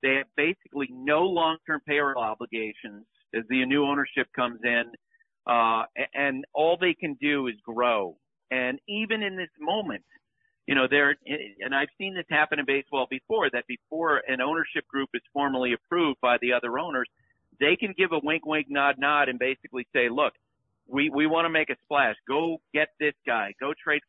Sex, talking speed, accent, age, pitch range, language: male, 180 wpm, American, 50-69, 125-165 Hz, English